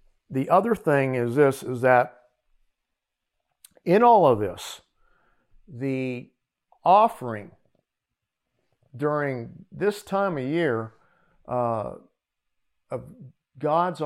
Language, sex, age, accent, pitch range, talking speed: English, male, 50-69, American, 125-170 Hz, 90 wpm